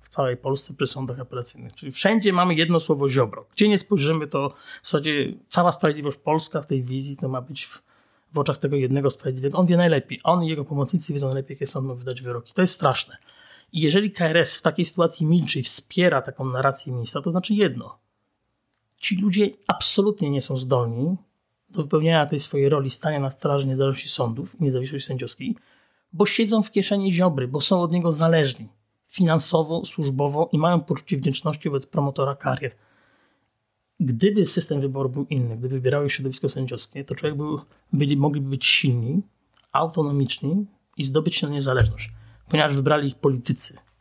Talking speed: 175 wpm